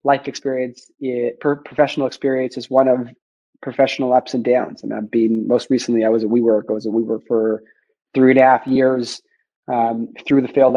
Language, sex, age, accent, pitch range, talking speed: English, male, 30-49, American, 115-135 Hz, 195 wpm